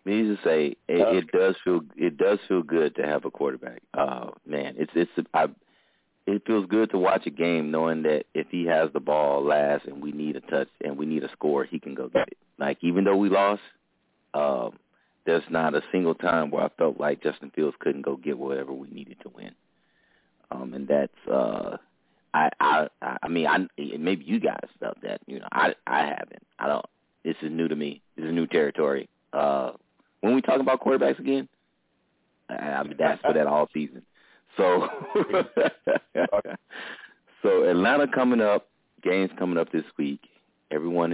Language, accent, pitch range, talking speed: English, American, 75-95 Hz, 190 wpm